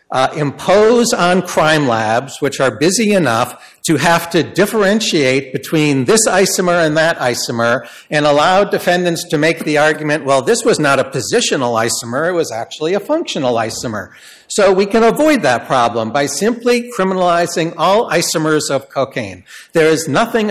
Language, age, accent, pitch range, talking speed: English, 50-69, American, 135-180 Hz, 160 wpm